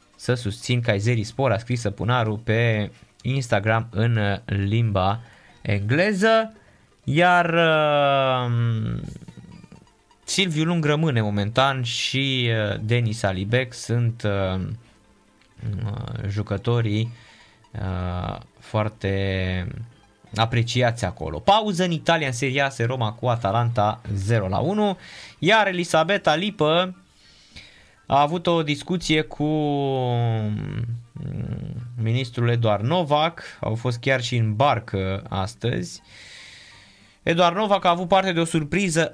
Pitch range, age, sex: 110-150 Hz, 20-39, male